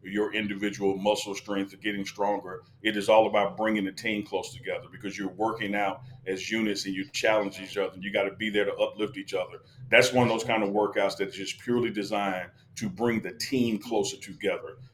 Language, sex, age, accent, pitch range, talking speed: English, male, 40-59, American, 105-130 Hz, 215 wpm